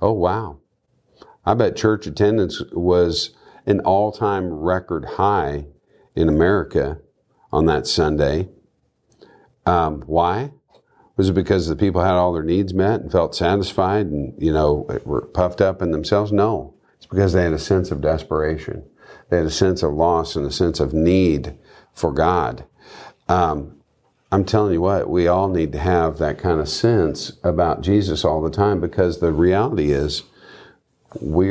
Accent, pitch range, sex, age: American, 80-95 Hz, male, 50-69